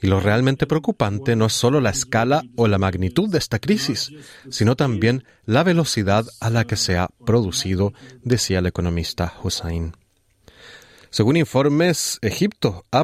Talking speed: 150 wpm